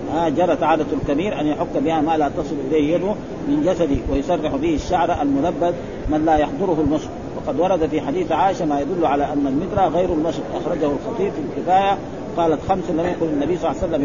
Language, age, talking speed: Arabic, 50-69, 190 wpm